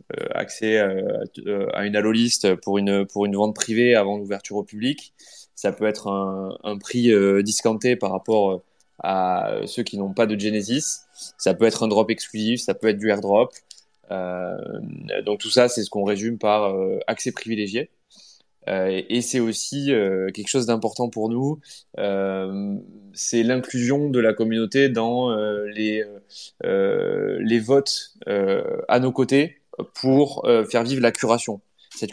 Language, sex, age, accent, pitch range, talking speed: French, male, 20-39, French, 105-125 Hz, 165 wpm